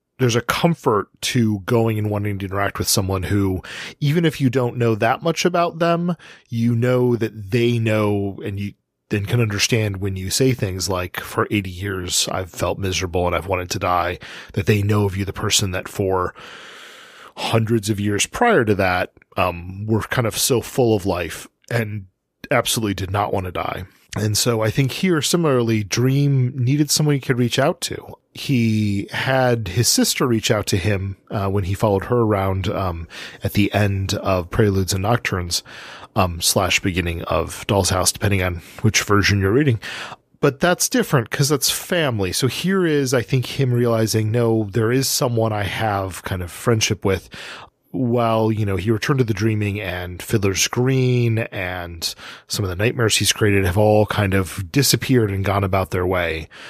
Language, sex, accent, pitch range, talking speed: English, male, American, 95-125 Hz, 185 wpm